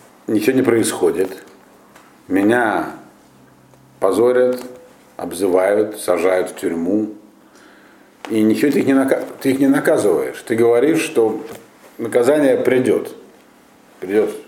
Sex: male